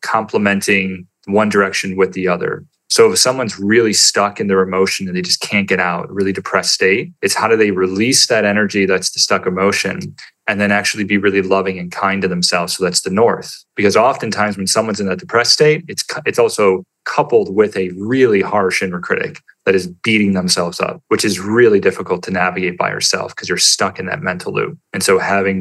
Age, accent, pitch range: 30-49, American, 95-115 Hz